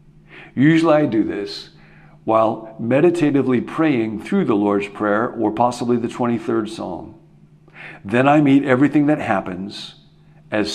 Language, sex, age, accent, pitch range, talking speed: English, male, 50-69, American, 105-150 Hz, 130 wpm